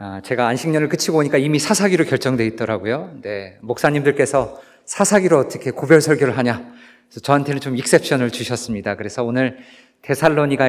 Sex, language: male, Korean